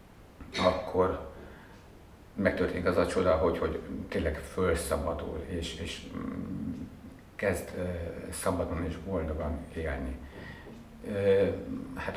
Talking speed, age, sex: 95 wpm, 50-69, male